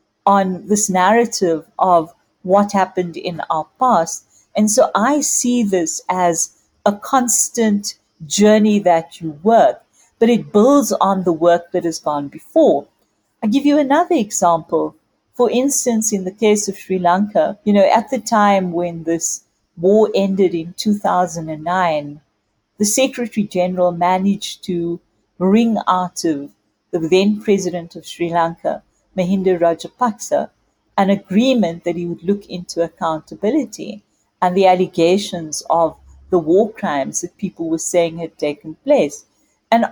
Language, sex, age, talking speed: English, female, 50-69, 145 wpm